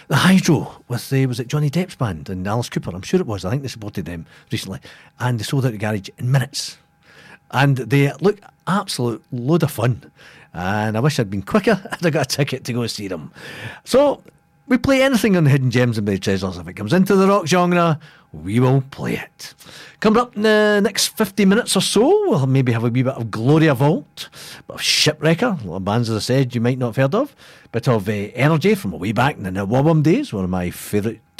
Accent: British